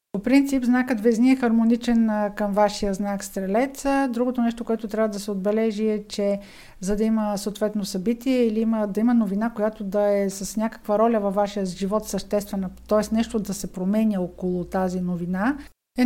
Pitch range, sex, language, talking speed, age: 200-235 Hz, female, Bulgarian, 180 wpm, 50-69